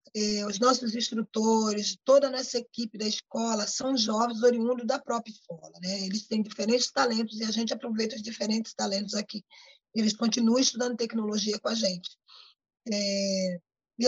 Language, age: Portuguese, 20-39